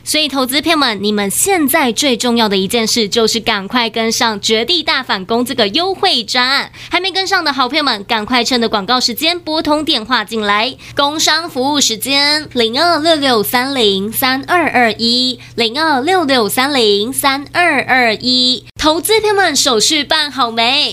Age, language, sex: 20-39, Chinese, female